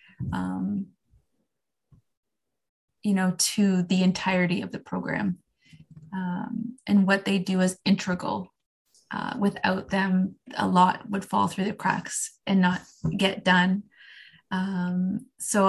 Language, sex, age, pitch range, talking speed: English, female, 20-39, 180-200 Hz, 120 wpm